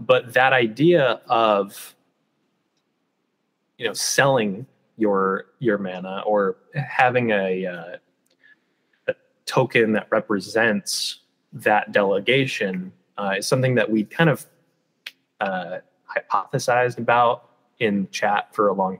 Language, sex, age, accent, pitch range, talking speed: English, male, 20-39, American, 100-130 Hz, 110 wpm